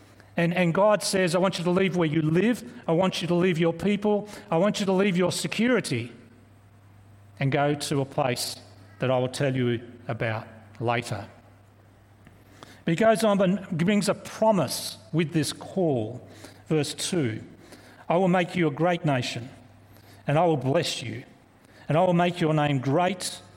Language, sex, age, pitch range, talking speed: English, male, 40-59, 110-170 Hz, 175 wpm